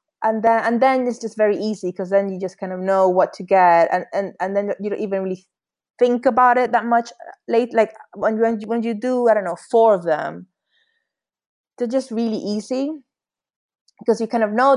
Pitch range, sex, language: 195-245 Hz, female, English